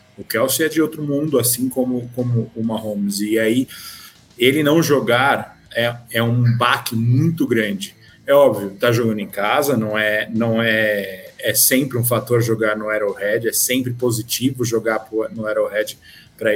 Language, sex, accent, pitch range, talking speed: Portuguese, male, Brazilian, 115-130 Hz, 165 wpm